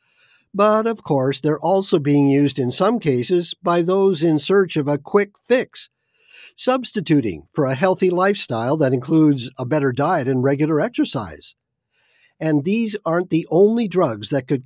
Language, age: English, 50-69